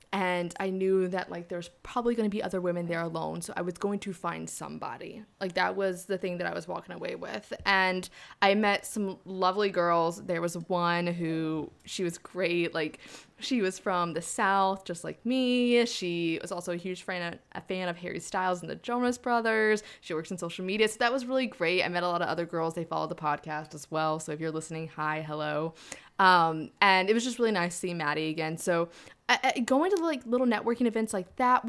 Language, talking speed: English, 225 wpm